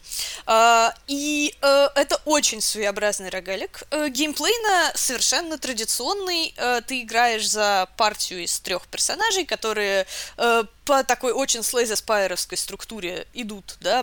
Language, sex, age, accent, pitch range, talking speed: Russian, female, 20-39, native, 200-270 Hz, 100 wpm